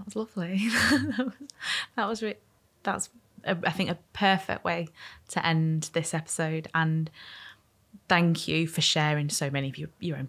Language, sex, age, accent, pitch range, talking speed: English, female, 20-39, British, 150-170 Hz, 170 wpm